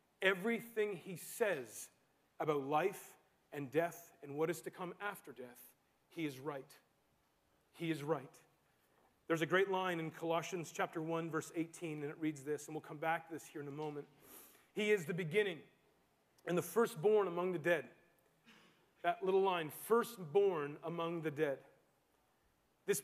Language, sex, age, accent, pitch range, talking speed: English, male, 40-59, American, 170-225 Hz, 160 wpm